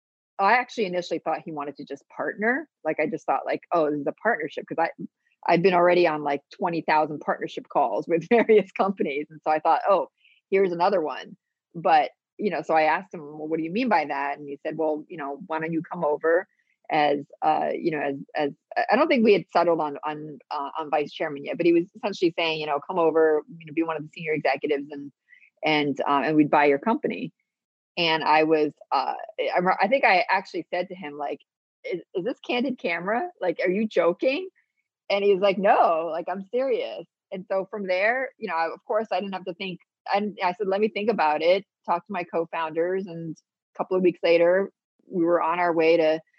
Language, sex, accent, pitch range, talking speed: English, female, American, 155-195 Hz, 230 wpm